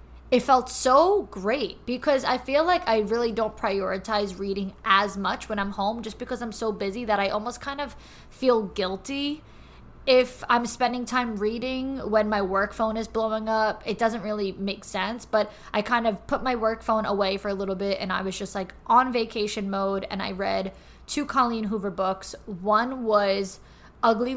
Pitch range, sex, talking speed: 195-230 Hz, female, 190 wpm